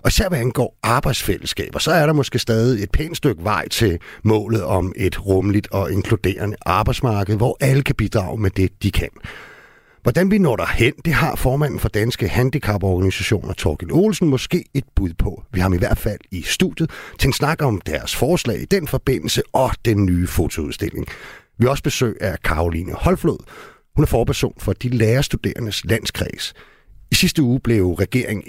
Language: Danish